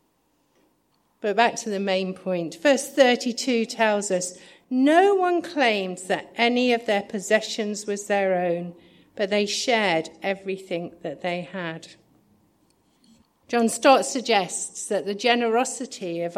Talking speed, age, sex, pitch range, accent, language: 130 wpm, 50-69, female, 185-240 Hz, British, English